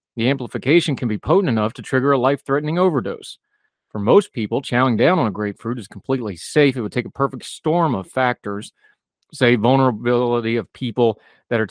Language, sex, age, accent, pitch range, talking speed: English, male, 40-59, American, 105-135 Hz, 185 wpm